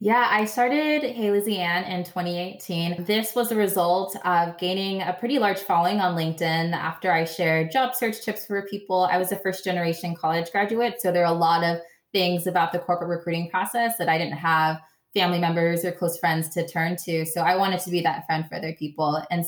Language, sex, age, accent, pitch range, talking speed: English, female, 20-39, American, 165-190 Hz, 215 wpm